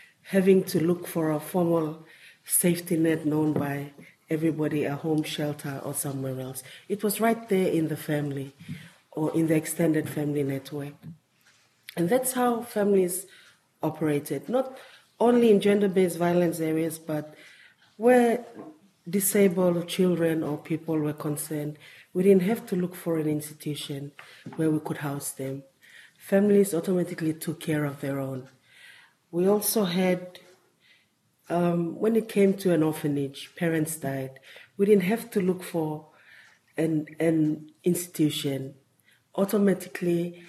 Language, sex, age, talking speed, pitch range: English, female, 40-59, 135 wpm, 150-190 Hz